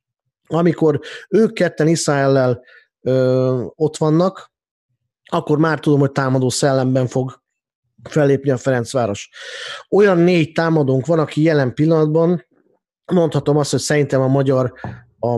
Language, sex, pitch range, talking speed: Hungarian, male, 130-155 Hz, 115 wpm